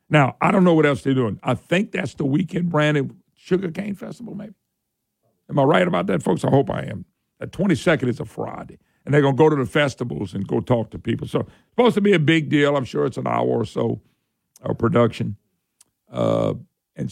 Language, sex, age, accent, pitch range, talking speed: English, male, 60-79, American, 120-150 Hz, 220 wpm